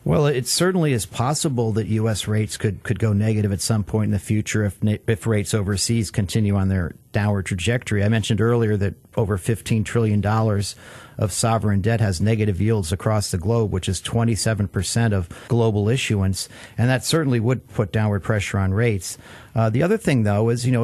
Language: English